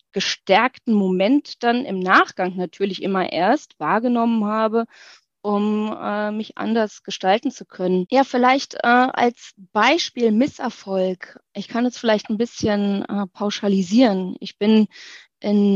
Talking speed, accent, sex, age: 130 wpm, German, female, 20-39